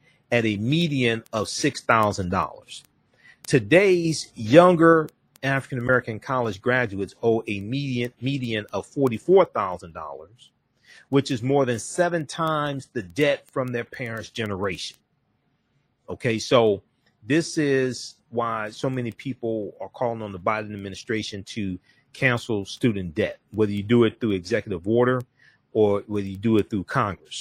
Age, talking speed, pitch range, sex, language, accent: 40-59, 130 wpm, 105-135 Hz, male, English, American